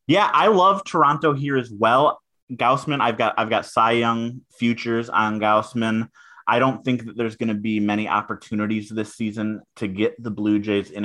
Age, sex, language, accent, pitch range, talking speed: 30-49, male, English, American, 100-130 Hz, 190 wpm